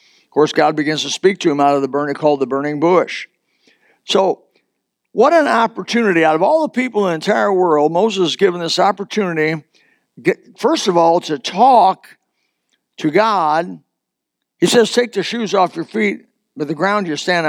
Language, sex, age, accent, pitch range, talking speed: English, male, 60-79, American, 155-205 Hz, 185 wpm